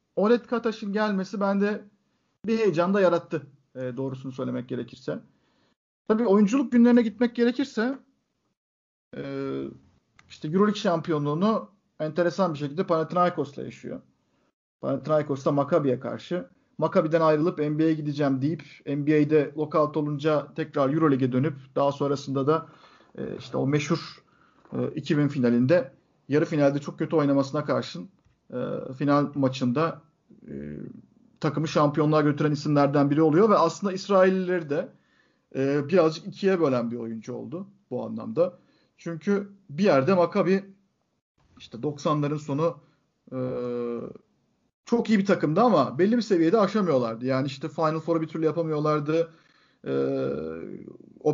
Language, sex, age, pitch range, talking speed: Turkish, male, 50-69, 140-185 Hz, 120 wpm